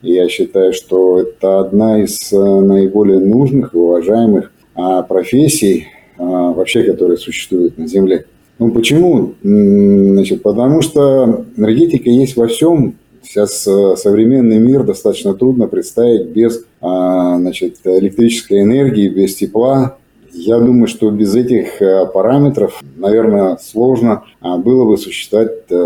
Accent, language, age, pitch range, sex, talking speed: native, Russian, 30-49, 100-125 Hz, male, 110 wpm